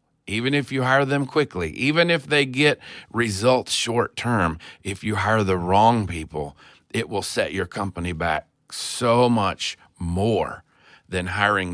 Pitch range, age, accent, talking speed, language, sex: 90-125 Hz, 40-59, American, 155 wpm, English, male